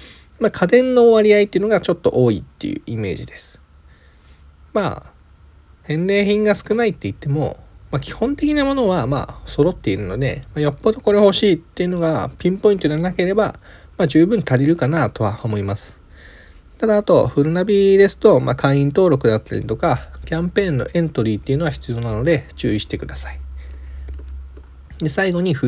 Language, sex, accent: Japanese, male, native